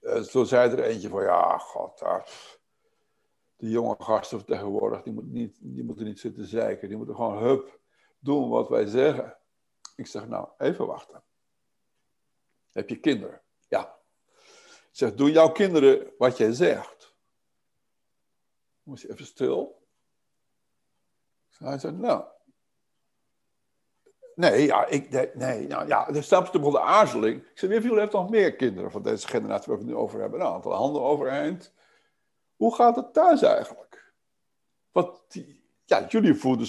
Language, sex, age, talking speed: Dutch, male, 60-79, 145 wpm